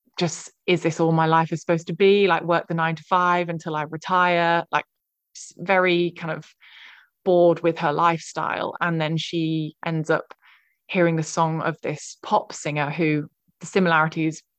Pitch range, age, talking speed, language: 160-175 Hz, 20-39, 175 wpm, English